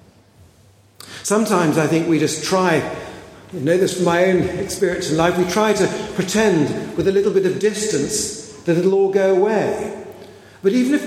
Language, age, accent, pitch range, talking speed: English, 50-69, British, 125-180 Hz, 180 wpm